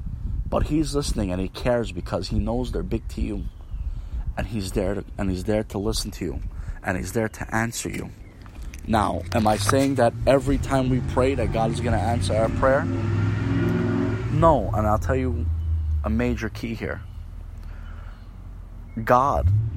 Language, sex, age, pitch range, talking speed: English, male, 30-49, 95-120 Hz, 175 wpm